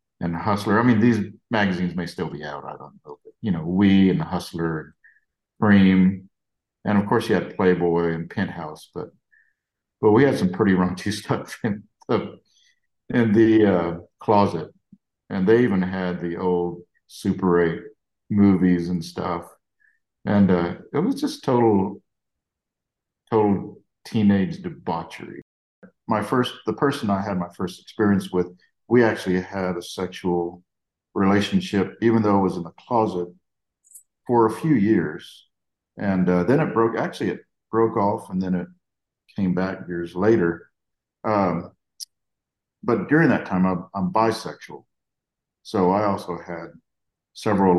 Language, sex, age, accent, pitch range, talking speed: English, male, 50-69, American, 90-110 Hz, 150 wpm